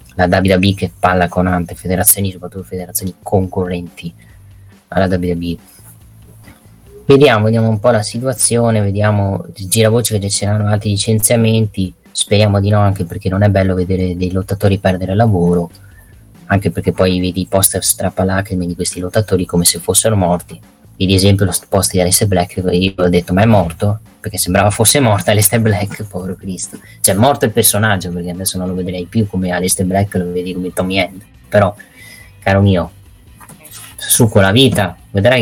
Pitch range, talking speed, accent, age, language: 90-105 Hz, 170 wpm, native, 20-39, Italian